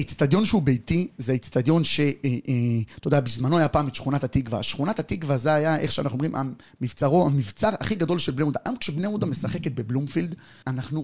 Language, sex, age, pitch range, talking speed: Hebrew, male, 30-49, 130-170 Hz, 180 wpm